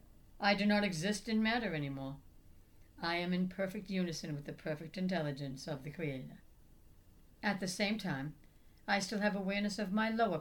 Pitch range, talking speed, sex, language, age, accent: 150-195 Hz, 175 wpm, female, English, 60-79, American